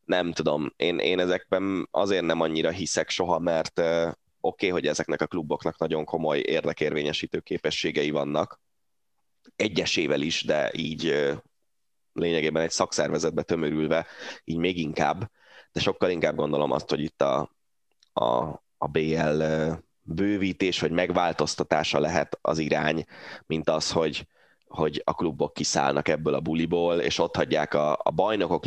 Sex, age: male, 20-39